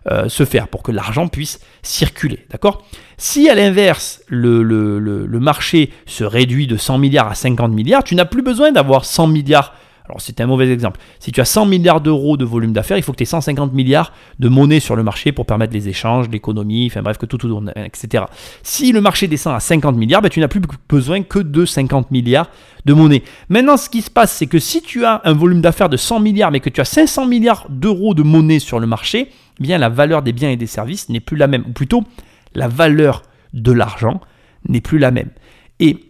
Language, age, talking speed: French, 30-49, 230 wpm